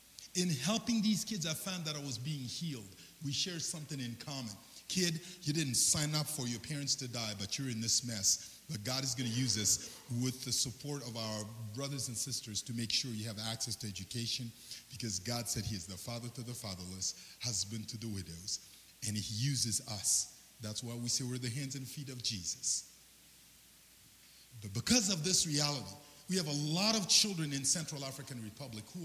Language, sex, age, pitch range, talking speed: English, male, 50-69, 115-155 Hz, 205 wpm